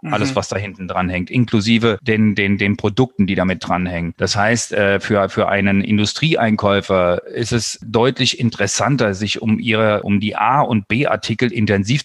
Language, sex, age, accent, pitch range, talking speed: German, male, 40-59, German, 105-125 Hz, 170 wpm